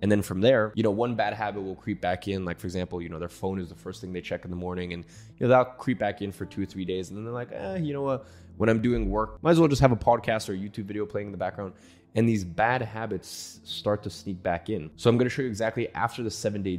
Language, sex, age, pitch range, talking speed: English, male, 20-39, 90-110 Hz, 310 wpm